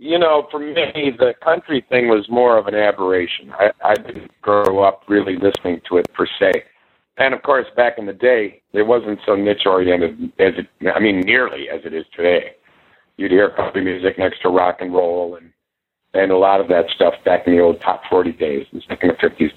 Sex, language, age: male, English, 50-69